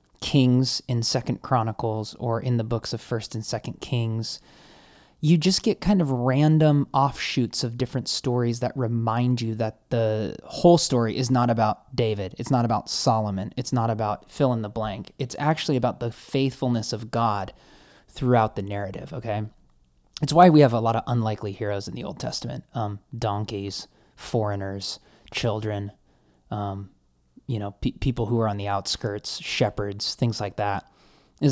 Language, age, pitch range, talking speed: English, 20-39, 105-130 Hz, 165 wpm